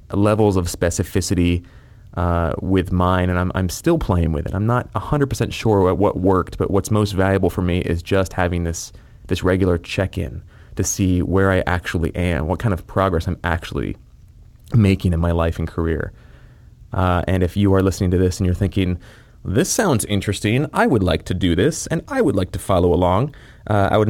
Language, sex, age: English, male, 30-49